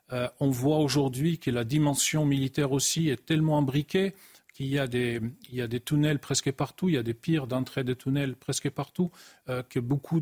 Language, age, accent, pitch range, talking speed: French, 40-59, French, 130-155 Hz, 210 wpm